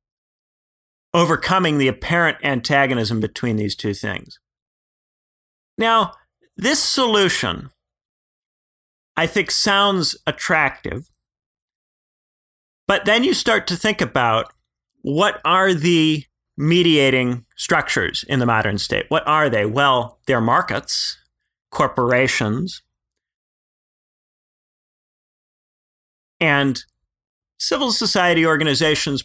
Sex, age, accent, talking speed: male, 40-59, American, 85 wpm